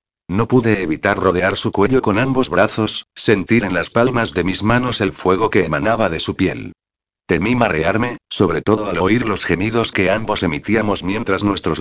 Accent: Spanish